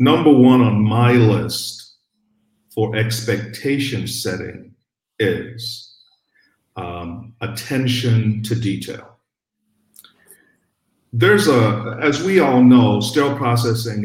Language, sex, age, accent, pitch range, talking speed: English, male, 50-69, American, 105-125 Hz, 90 wpm